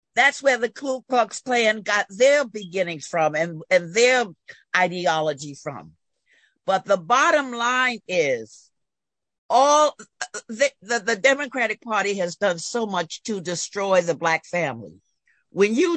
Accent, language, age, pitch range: American, English, 50-69, 190-260 Hz